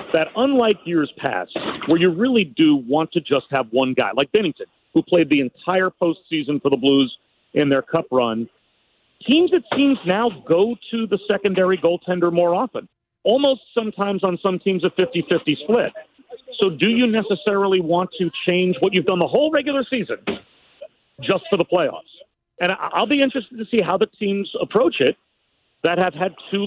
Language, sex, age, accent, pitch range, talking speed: English, male, 40-59, American, 150-210 Hz, 180 wpm